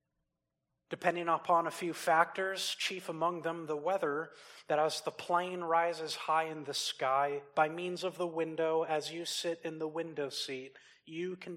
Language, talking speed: English, 170 wpm